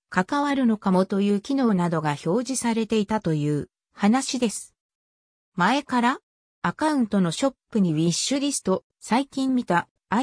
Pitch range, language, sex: 180-265 Hz, Japanese, female